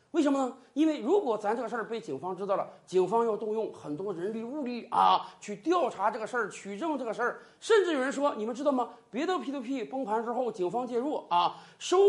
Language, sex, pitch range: Chinese, male, 220-320 Hz